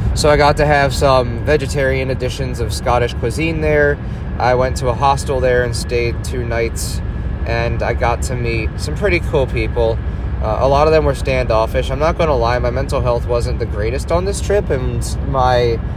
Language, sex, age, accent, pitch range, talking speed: English, male, 20-39, American, 100-135 Hz, 205 wpm